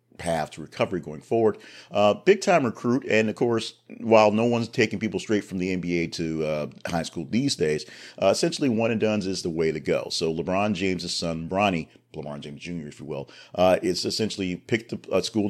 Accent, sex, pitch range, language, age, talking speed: American, male, 80-100 Hz, English, 40-59, 215 wpm